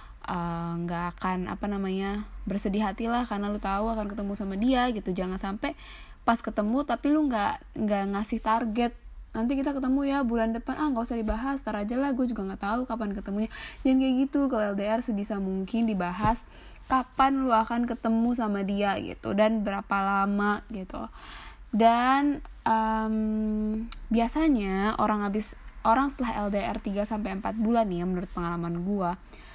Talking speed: 150 wpm